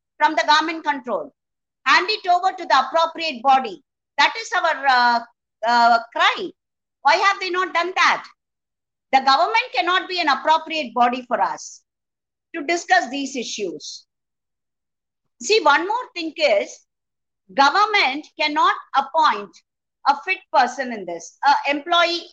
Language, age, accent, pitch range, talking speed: English, 50-69, Indian, 265-350 Hz, 135 wpm